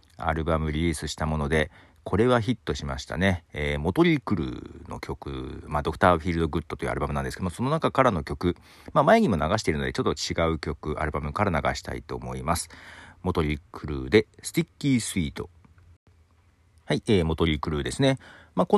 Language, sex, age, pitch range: Japanese, male, 40-59, 75-110 Hz